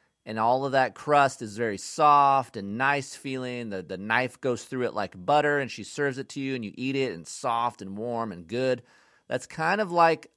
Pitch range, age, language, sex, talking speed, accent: 120-155 Hz, 30-49, English, male, 225 wpm, American